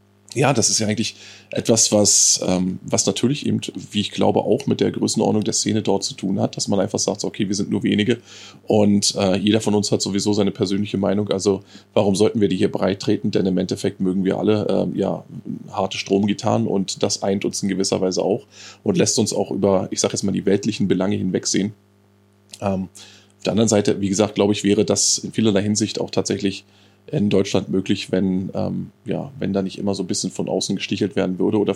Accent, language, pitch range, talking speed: German, German, 100-105 Hz, 220 wpm